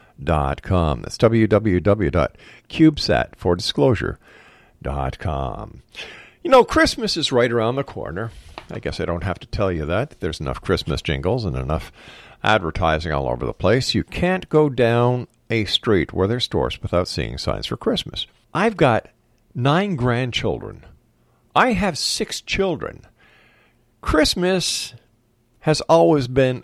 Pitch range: 100-155 Hz